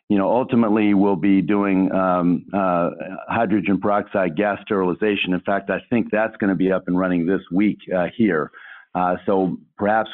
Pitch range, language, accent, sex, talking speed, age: 90-105 Hz, English, American, male, 180 wpm, 50-69